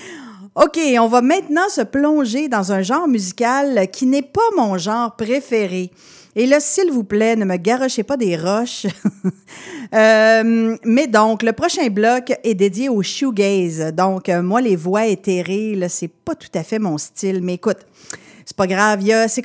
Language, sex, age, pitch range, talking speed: French, female, 40-59, 195-260 Hz, 180 wpm